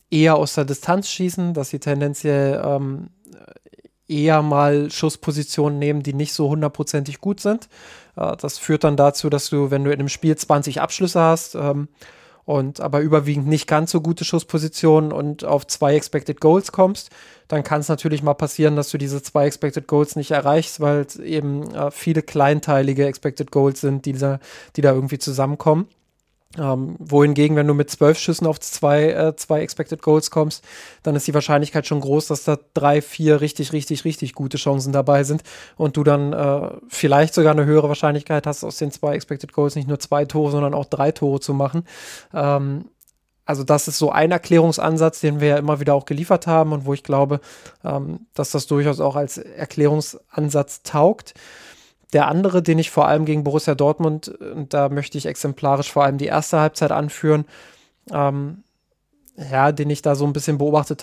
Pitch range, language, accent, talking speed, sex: 145-155 Hz, German, German, 185 wpm, male